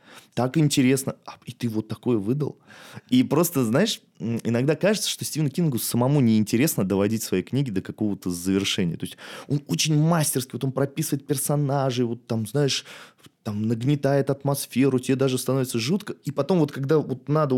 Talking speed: 165 wpm